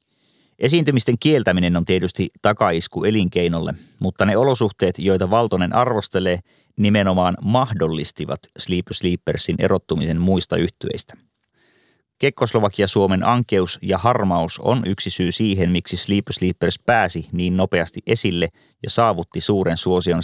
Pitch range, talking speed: 90-110 Hz, 115 wpm